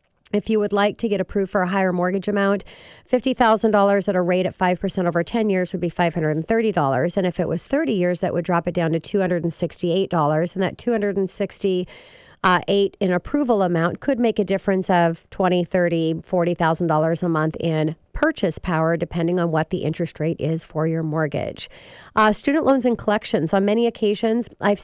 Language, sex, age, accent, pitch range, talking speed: English, female, 40-59, American, 165-210 Hz, 185 wpm